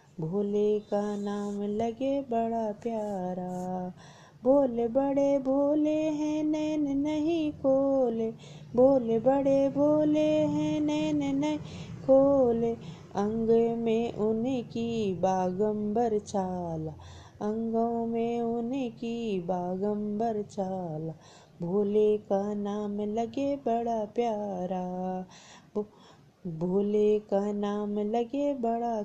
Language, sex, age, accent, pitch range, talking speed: Hindi, female, 20-39, native, 205-265 Hz, 100 wpm